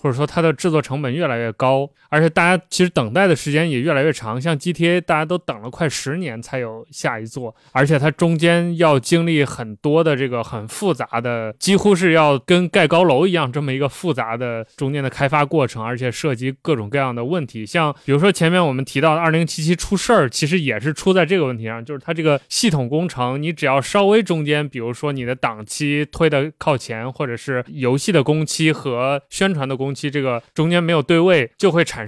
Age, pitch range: 20-39, 125-165 Hz